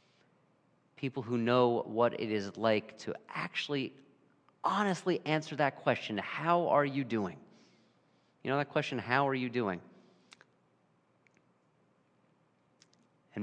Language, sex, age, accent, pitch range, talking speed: English, male, 40-59, American, 110-145 Hz, 115 wpm